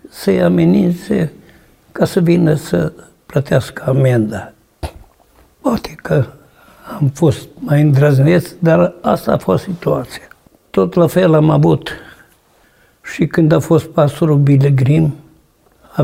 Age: 60-79